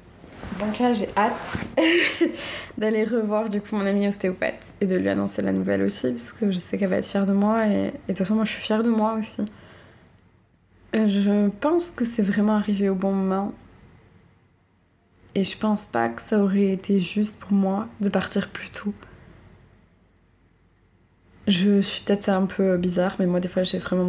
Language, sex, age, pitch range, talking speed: French, female, 20-39, 175-205 Hz, 190 wpm